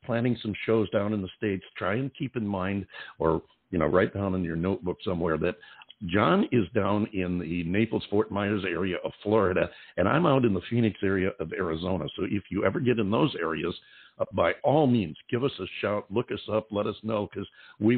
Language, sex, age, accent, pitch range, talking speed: English, male, 60-79, American, 90-110 Hz, 220 wpm